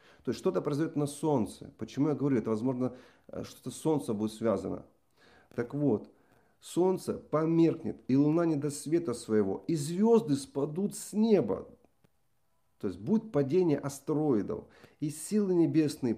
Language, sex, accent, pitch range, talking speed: Russian, male, native, 125-170 Hz, 145 wpm